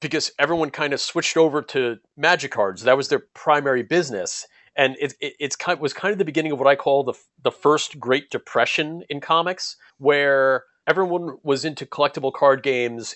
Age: 30-49